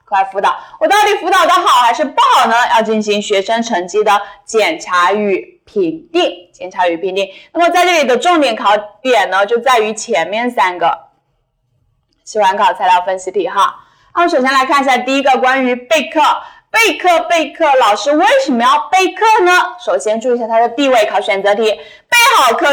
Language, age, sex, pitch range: Chinese, 20-39, female, 210-320 Hz